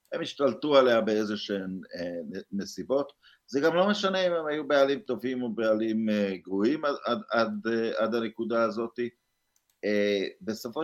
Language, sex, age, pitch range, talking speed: Hebrew, male, 50-69, 100-135 Hz, 140 wpm